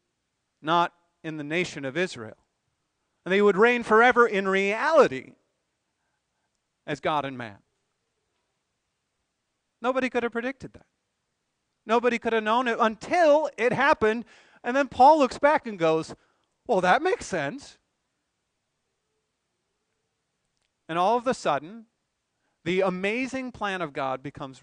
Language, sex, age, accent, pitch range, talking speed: English, male, 40-59, American, 160-230 Hz, 125 wpm